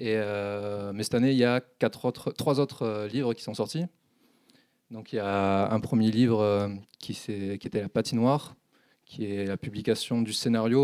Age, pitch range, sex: 20-39, 105-125 Hz, male